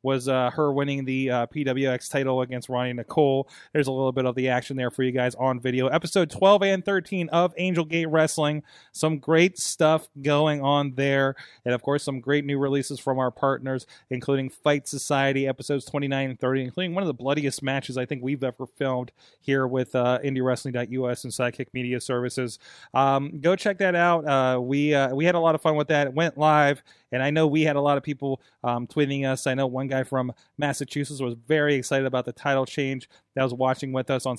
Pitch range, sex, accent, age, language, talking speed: 130-155 Hz, male, American, 30-49, English, 220 wpm